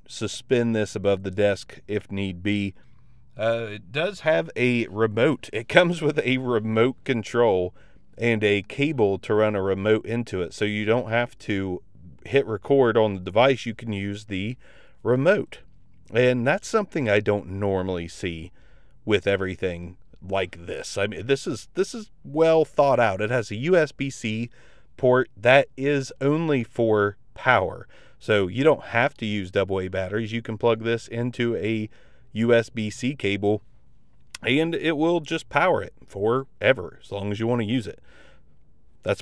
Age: 30-49